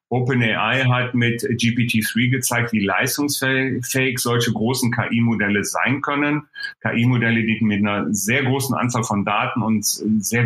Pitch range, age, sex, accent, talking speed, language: 115-130 Hz, 40-59, male, German, 130 wpm, German